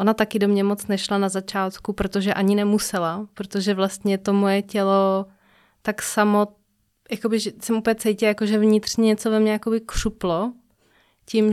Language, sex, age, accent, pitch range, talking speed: Czech, female, 20-39, native, 195-215 Hz, 150 wpm